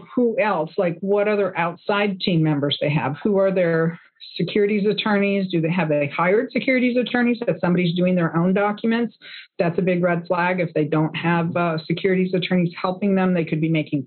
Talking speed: 200 wpm